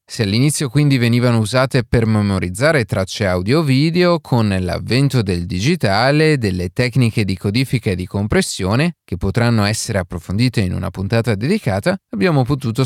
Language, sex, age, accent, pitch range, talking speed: Italian, male, 30-49, native, 100-140 Hz, 140 wpm